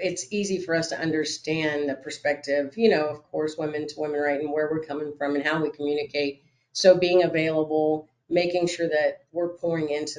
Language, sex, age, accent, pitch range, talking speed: English, female, 40-59, American, 140-160 Hz, 200 wpm